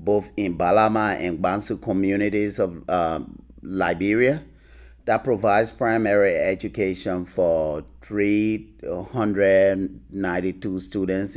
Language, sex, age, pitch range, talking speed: English, male, 30-49, 80-105 Hz, 85 wpm